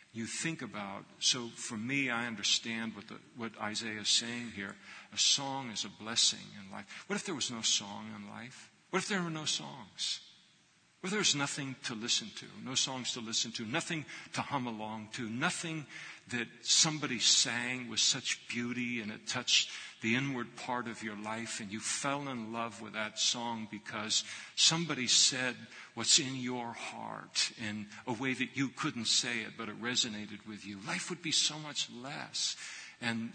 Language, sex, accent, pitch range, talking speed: English, male, American, 110-135 Hz, 180 wpm